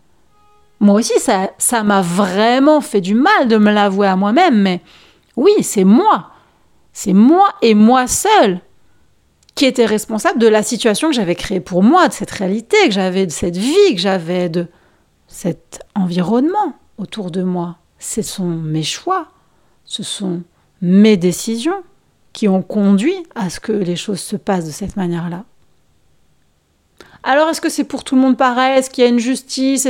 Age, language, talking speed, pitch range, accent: 40-59, French, 175 wpm, 195-275 Hz, French